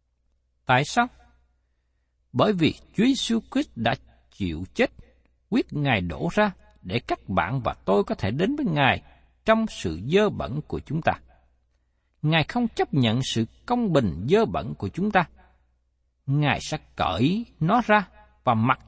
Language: Vietnamese